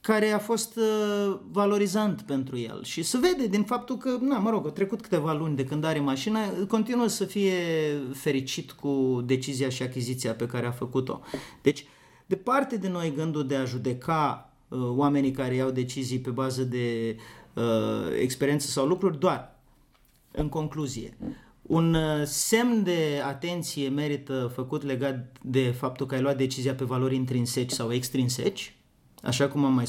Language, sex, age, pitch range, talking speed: Romanian, male, 30-49, 130-160 Hz, 165 wpm